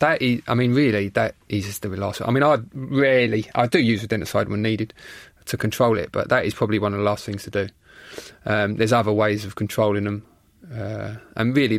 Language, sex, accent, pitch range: English, male, British, 105-120 Hz